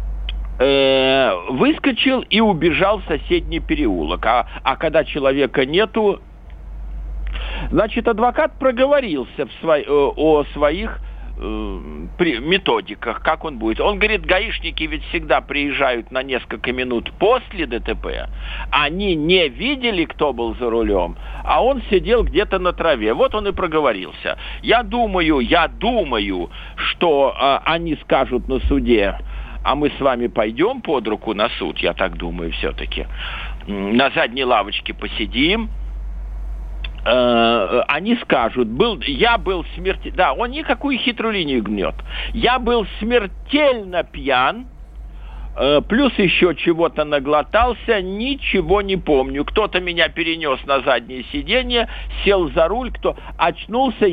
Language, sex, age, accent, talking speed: Russian, male, 50-69, native, 125 wpm